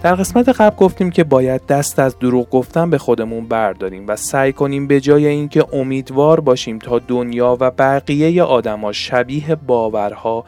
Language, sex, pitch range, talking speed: Persian, male, 120-150 Hz, 160 wpm